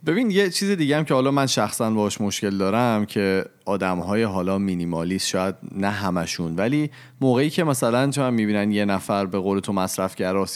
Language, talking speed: Persian, 190 wpm